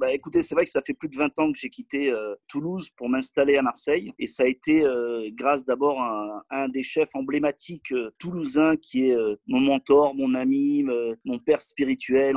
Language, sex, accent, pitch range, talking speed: French, male, French, 125-170 Hz, 230 wpm